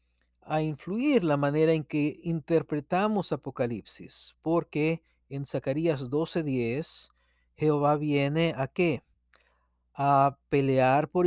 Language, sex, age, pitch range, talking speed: Spanish, male, 40-59, 120-155 Hz, 100 wpm